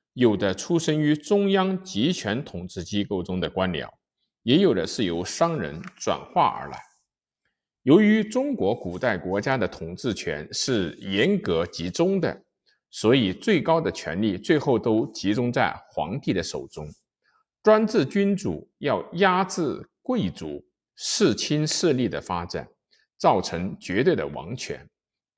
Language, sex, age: Chinese, male, 50-69